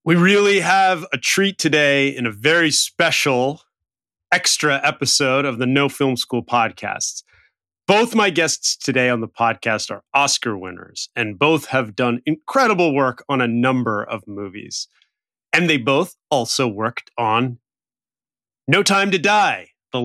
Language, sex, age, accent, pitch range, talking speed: English, male, 30-49, American, 125-180 Hz, 150 wpm